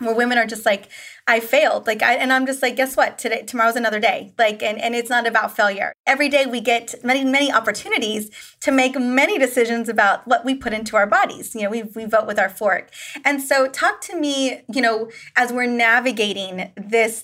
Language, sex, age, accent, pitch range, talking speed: English, female, 20-39, American, 220-270 Hz, 220 wpm